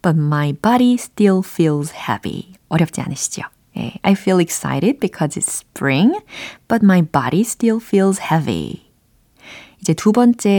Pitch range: 160-225 Hz